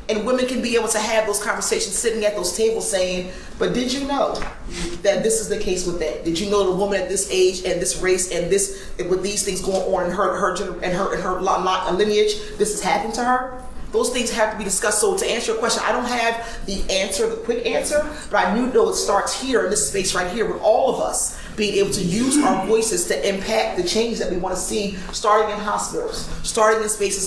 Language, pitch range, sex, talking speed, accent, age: English, 195-230 Hz, female, 250 wpm, American, 30-49